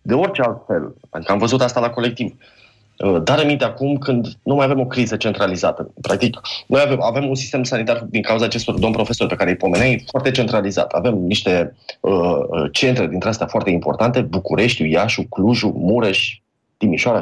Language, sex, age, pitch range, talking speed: Romanian, male, 20-39, 105-130 Hz, 180 wpm